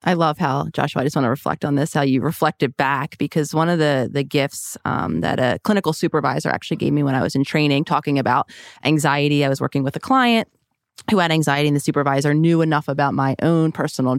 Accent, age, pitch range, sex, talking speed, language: American, 30-49, 140-175 Hz, female, 235 wpm, English